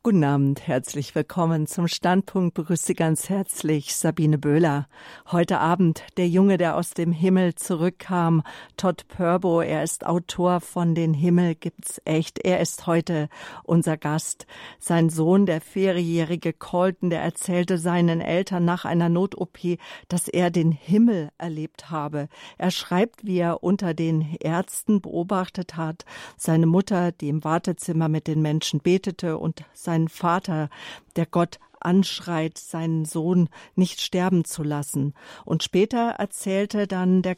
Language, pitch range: German, 160-185 Hz